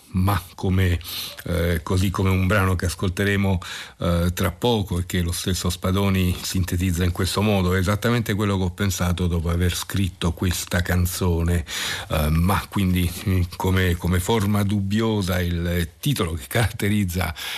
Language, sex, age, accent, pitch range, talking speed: Italian, male, 50-69, native, 90-105 Hz, 145 wpm